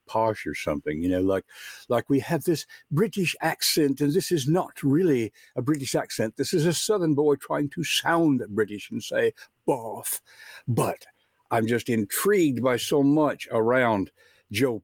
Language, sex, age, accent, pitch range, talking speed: English, male, 60-79, American, 110-155 Hz, 165 wpm